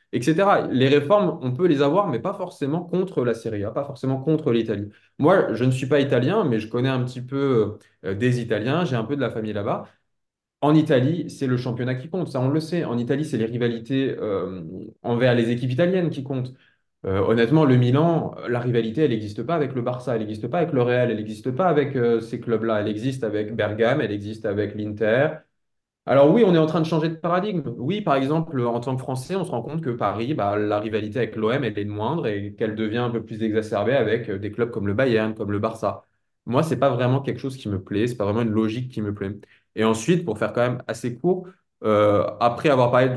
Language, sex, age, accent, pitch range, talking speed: French, male, 20-39, French, 110-150 Hz, 245 wpm